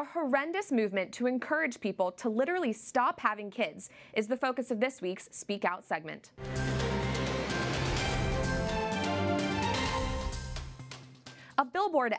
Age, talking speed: 20-39, 110 wpm